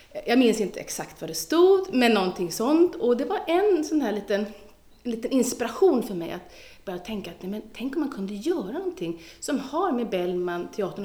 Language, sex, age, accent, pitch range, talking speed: Swedish, female, 30-49, native, 185-275 Hz, 200 wpm